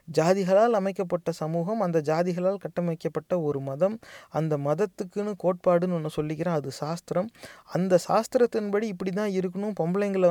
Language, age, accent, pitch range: Tamil, 30-49, native, 160-195 Hz